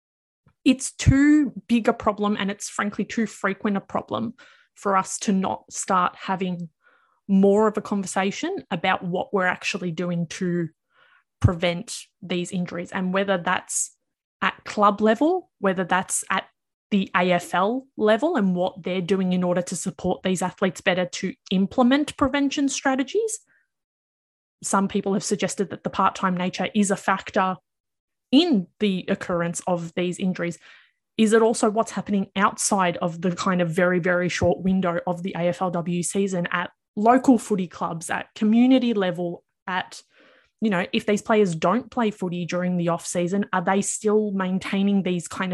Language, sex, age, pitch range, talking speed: English, female, 20-39, 180-215 Hz, 155 wpm